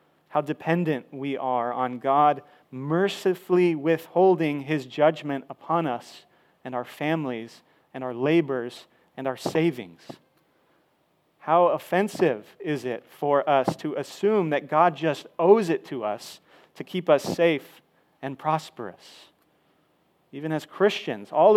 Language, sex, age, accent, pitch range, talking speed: English, male, 40-59, American, 135-175 Hz, 130 wpm